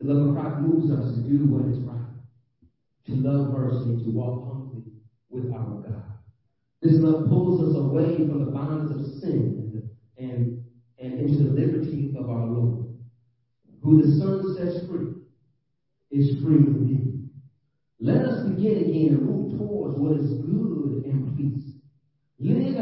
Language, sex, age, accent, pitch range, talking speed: English, male, 40-59, American, 130-185 Hz, 160 wpm